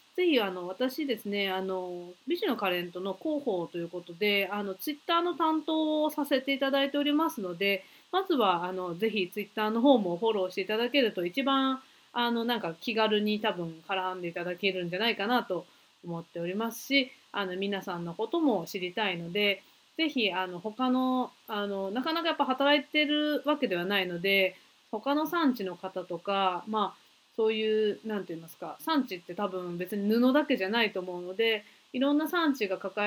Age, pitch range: 30-49, 185-255 Hz